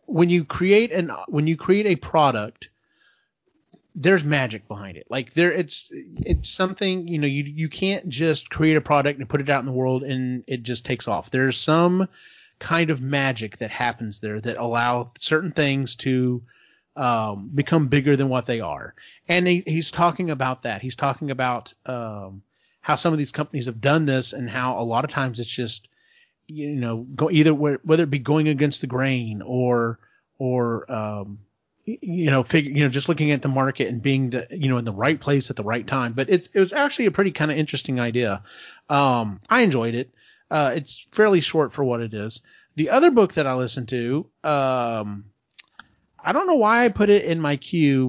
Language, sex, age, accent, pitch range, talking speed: English, male, 30-49, American, 125-160 Hz, 205 wpm